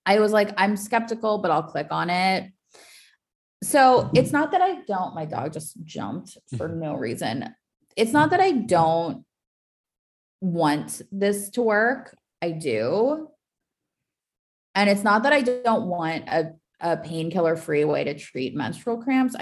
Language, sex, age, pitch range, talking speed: English, female, 20-39, 155-210 Hz, 155 wpm